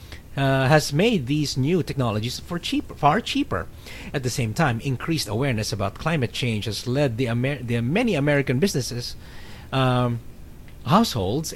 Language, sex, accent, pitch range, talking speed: English, male, Filipino, 115-160 Hz, 150 wpm